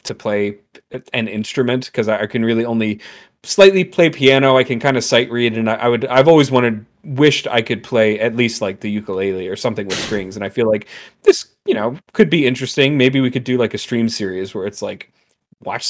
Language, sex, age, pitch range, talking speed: English, male, 30-49, 110-145 Hz, 225 wpm